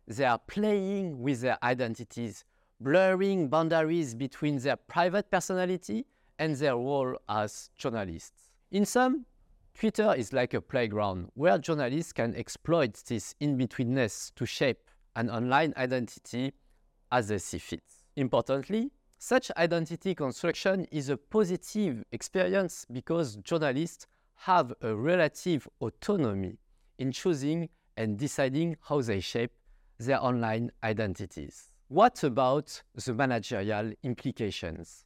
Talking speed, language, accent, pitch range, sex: 115 wpm, French, French, 115-165 Hz, male